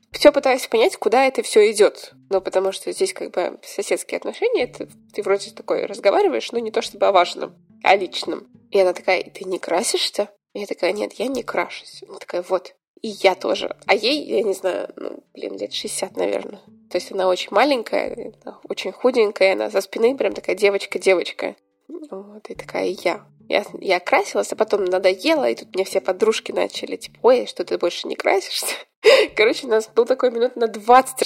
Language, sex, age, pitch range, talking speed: Russian, female, 20-39, 195-325 Hz, 200 wpm